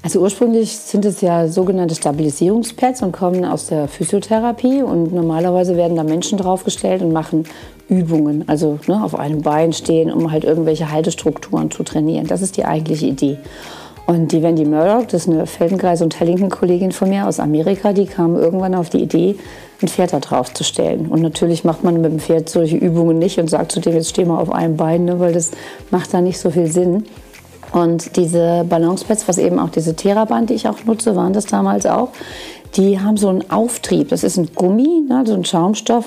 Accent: German